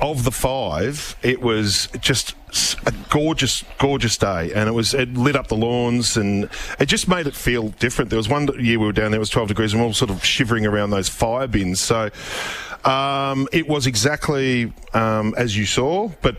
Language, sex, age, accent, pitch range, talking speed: English, male, 40-59, Australian, 105-130 Hz, 210 wpm